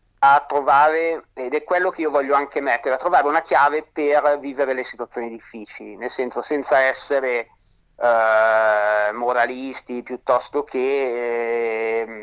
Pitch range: 120-145 Hz